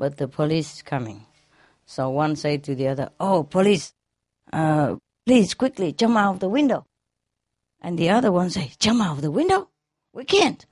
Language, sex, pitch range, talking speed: English, female, 160-260 Hz, 185 wpm